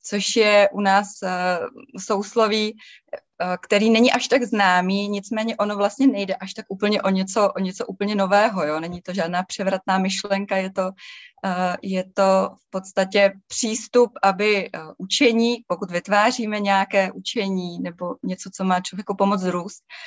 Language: Czech